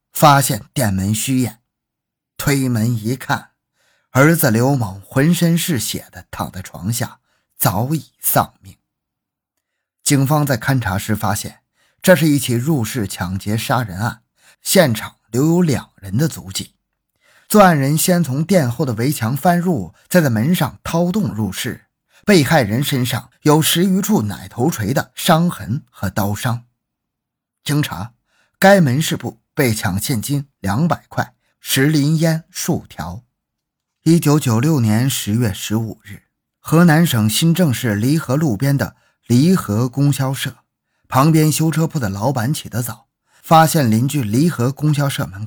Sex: male